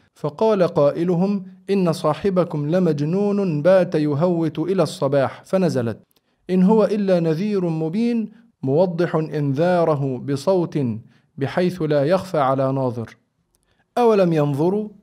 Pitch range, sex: 140-180 Hz, male